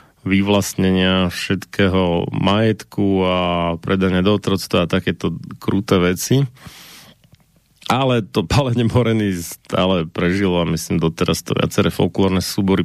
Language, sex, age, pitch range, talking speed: Slovak, male, 30-49, 90-105 Hz, 105 wpm